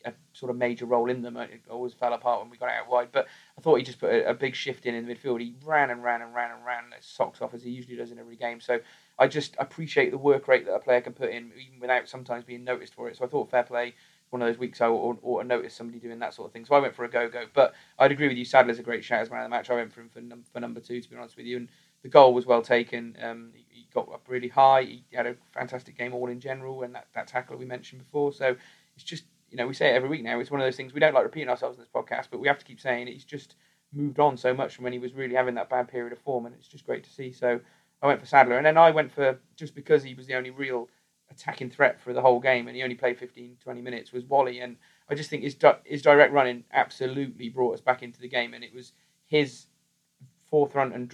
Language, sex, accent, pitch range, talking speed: English, male, British, 120-135 Hz, 300 wpm